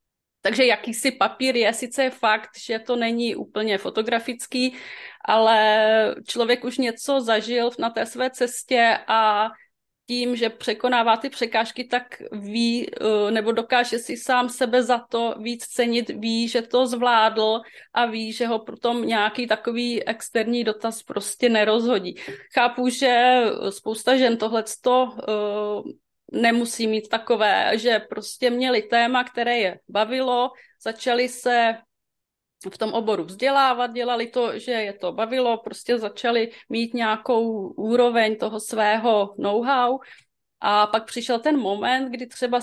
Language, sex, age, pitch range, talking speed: Czech, female, 30-49, 220-245 Hz, 135 wpm